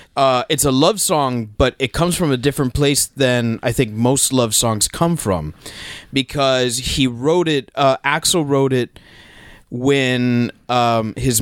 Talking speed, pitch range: 165 wpm, 110-135 Hz